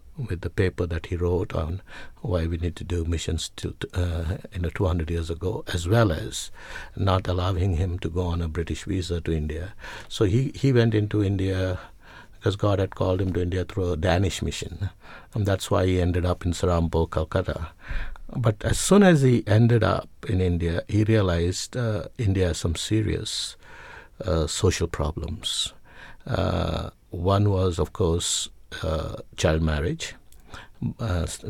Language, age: English, 60-79